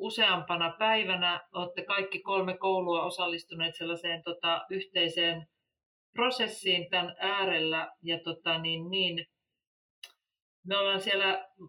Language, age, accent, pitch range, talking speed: Finnish, 40-59, native, 170-200 Hz, 105 wpm